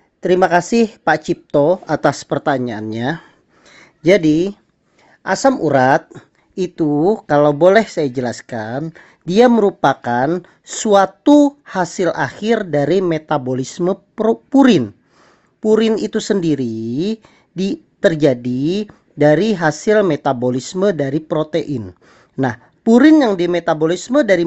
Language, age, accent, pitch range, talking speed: Indonesian, 40-59, native, 140-210 Hz, 90 wpm